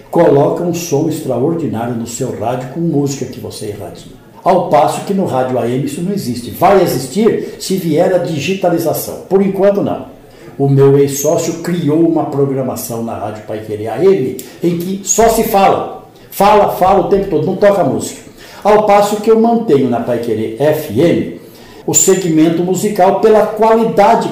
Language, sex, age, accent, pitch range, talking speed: Portuguese, male, 60-79, Brazilian, 120-180 Hz, 165 wpm